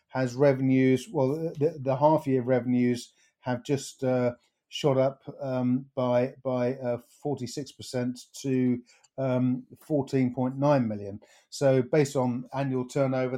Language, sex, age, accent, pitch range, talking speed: English, male, 50-69, British, 125-145 Hz, 125 wpm